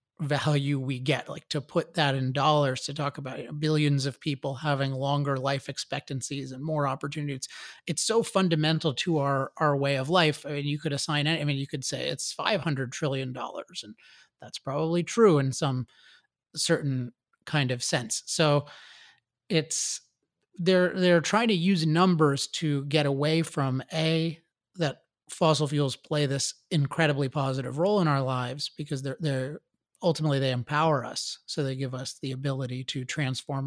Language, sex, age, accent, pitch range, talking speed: English, male, 30-49, American, 135-160 Hz, 170 wpm